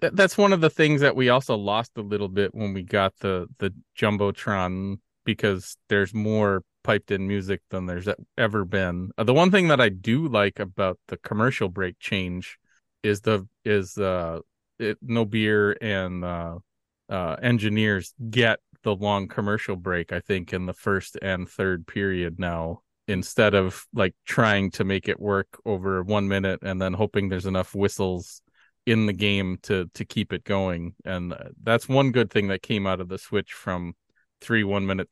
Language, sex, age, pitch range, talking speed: English, male, 30-49, 95-110 Hz, 180 wpm